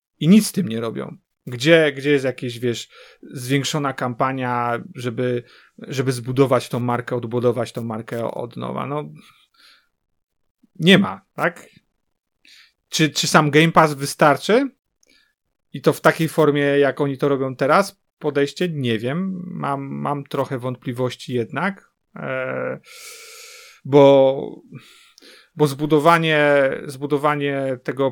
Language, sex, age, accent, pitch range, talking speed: Polish, male, 40-59, native, 125-150 Hz, 120 wpm